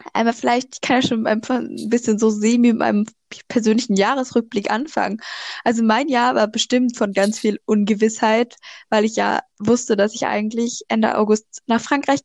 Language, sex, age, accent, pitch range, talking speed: German, female, 10-29, German, 220-260 Hz, 165 wpm